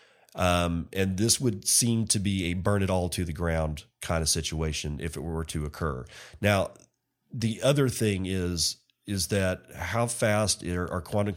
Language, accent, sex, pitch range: English, American, male, 85-110 Hz